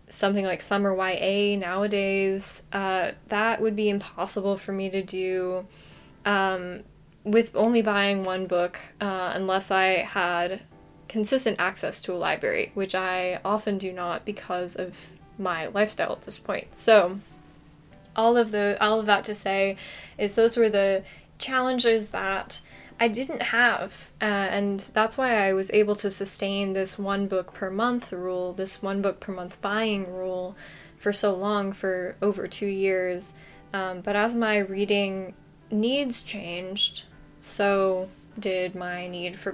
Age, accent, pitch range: 10-29, American, 185-210 Hz